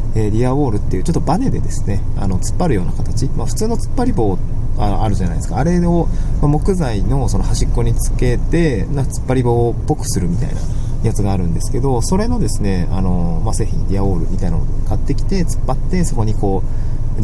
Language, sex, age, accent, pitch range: Japanese, male, 20-39, native, 95-125 Hz